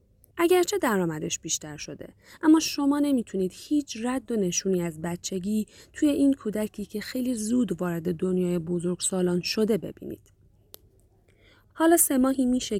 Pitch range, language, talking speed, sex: 175-245 Hz, Persian, 130 wpm, female